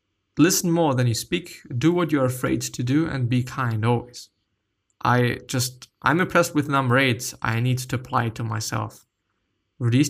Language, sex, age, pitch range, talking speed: English, male, 20-39, 115-145 Hz, 185 wpm